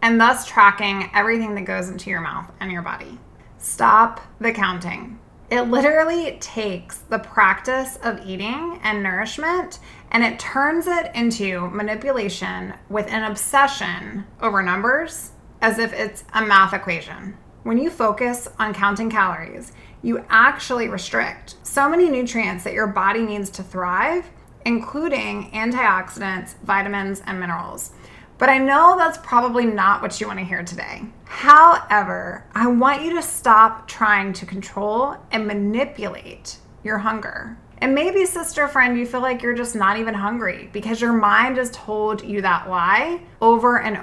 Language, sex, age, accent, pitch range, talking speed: English, female, 20-39, American, 200-255 Hz, 150 wpm